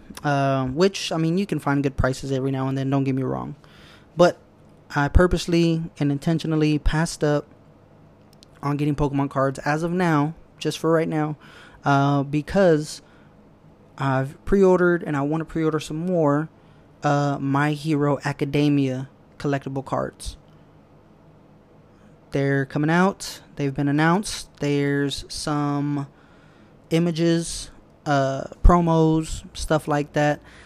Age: 20-39